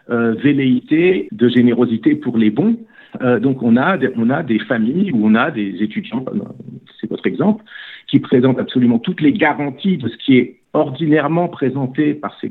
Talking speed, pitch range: 180 wpm, 110-155 Hz